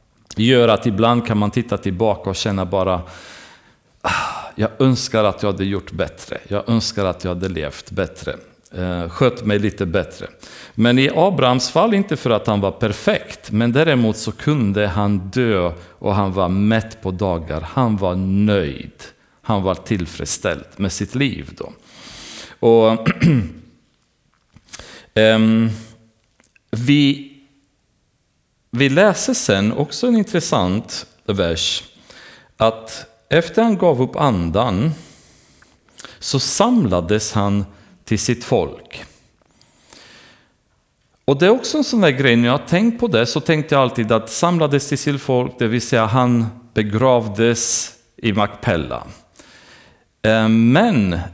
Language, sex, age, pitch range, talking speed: Swedish, male, 40-59, 100-130 Hz, 135 wpm